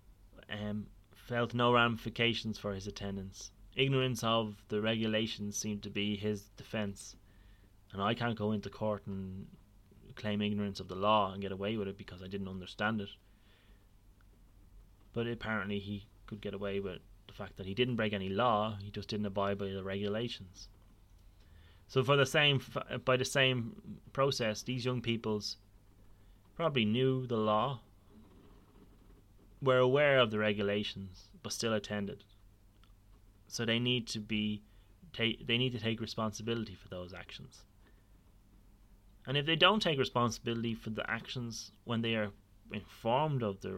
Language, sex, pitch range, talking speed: English, male, 100-115 Hz, 155 wpm